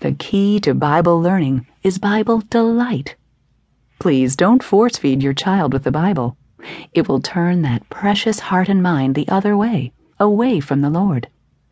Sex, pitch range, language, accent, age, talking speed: female, 140-210 Hz, English, American, 40-59, 160 wpm